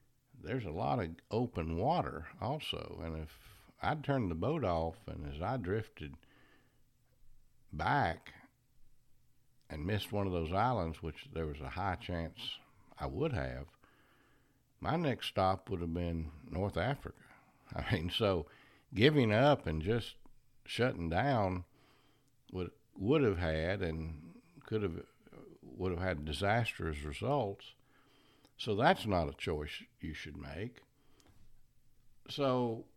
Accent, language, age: American, English, 60-79